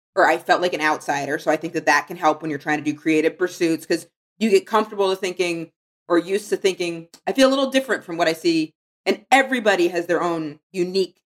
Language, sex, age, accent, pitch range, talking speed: English, female, 30-49, American, 150-180 Hz, 240 wpm